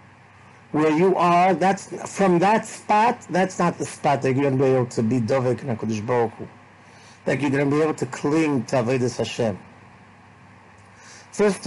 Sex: male